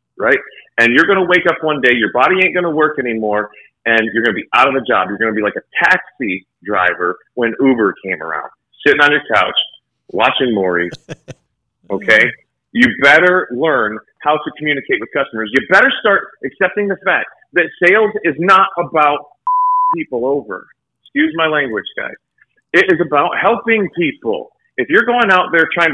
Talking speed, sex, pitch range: 175 wpm, male, 120-190 Hz